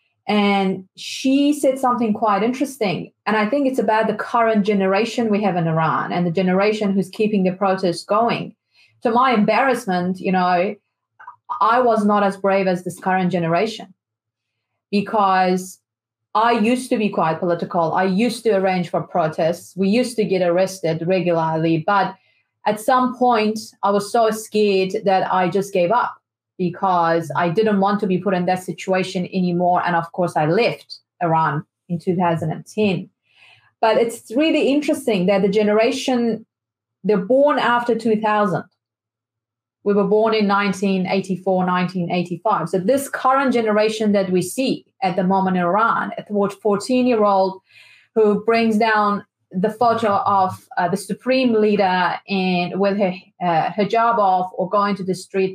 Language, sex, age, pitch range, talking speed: English, female, 30-49, 180-220 Hz, 155 wpm